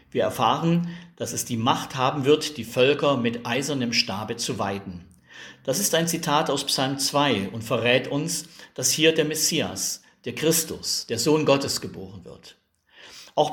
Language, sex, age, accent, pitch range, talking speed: German, male, 50-69, German, 120-145 Hz, 165 wpm